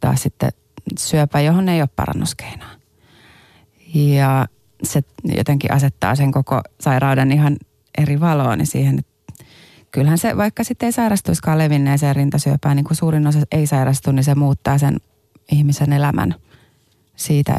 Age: 30-49